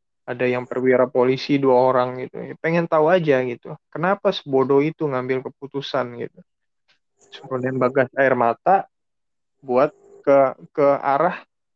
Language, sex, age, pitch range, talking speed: Indonesian, male, 20-39, 130-155 Hz, 130 wpm